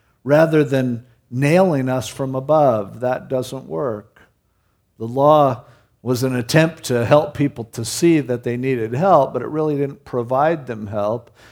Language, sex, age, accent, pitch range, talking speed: English, male, 50-69, American, 125-160 Hz, 155 wpm